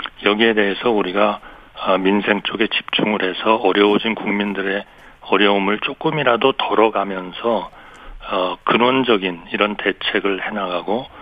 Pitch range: 95-110 Hz